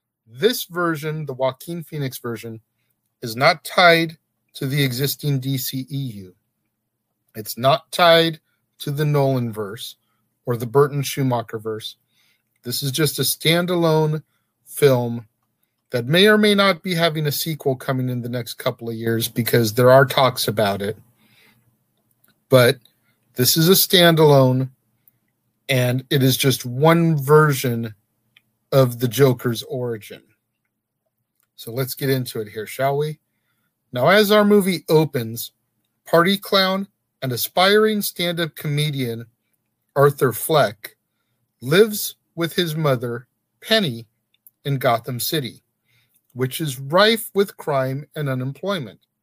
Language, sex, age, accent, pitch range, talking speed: English, male, 40-59, American, 115-160 Hz, 130 wpm